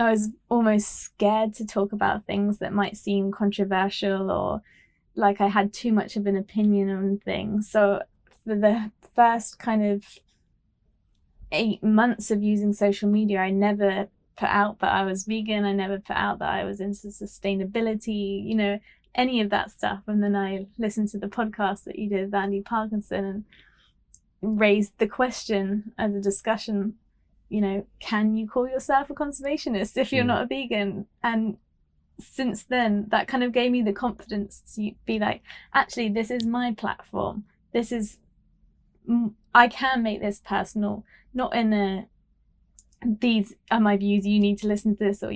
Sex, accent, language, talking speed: female, British, English, 170 wpm